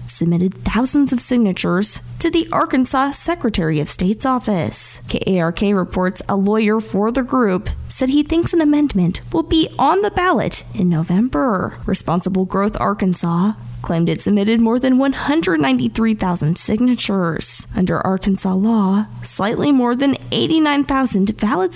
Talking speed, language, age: 130 wpm, English, 10-29